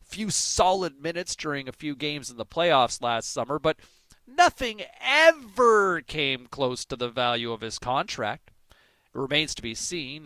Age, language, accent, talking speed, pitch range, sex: 40-59, English, American, 165 wpm, 130-195 Hz, male